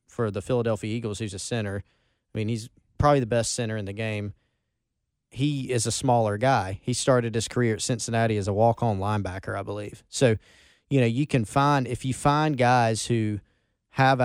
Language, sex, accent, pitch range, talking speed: English, male, American, 105-120 Hz, 200 wpm